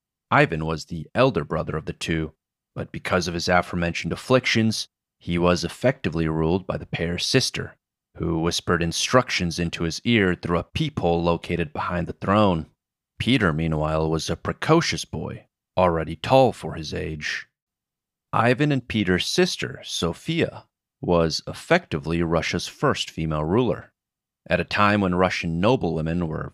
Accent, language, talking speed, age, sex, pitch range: American, English, 145 wpm, 30-49, male, 80-100 Hz